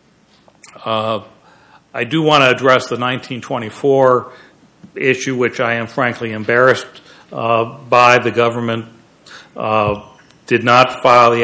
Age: 60-79